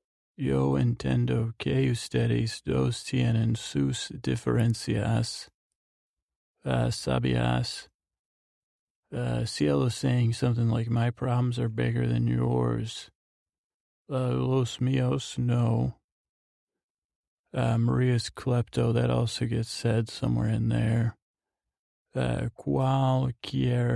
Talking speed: 90 wpm